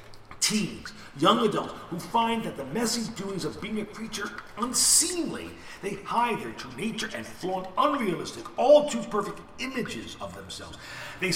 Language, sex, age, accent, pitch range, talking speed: English, male, 50-69, American, 160-220 Hz, 145 wpm